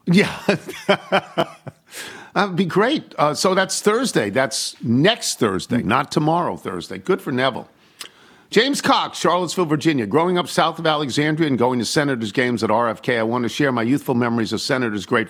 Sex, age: male, 50-69